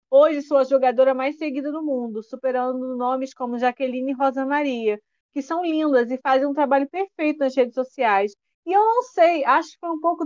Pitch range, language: 260-315 Hz, Portuguese